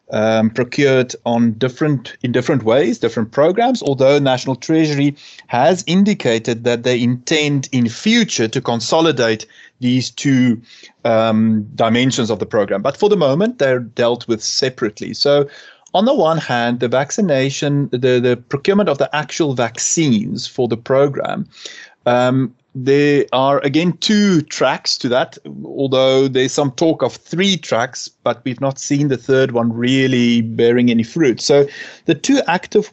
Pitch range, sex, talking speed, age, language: 120-145 Hz, male, 150 wpm, 30-49, English